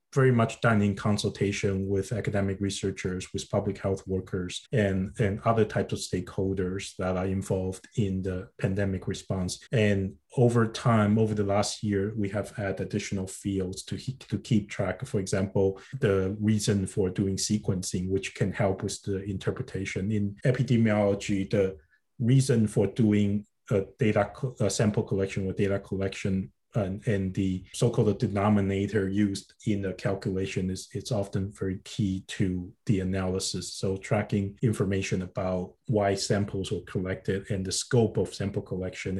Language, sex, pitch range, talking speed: English, male, 95-105 Hz, 150 wpm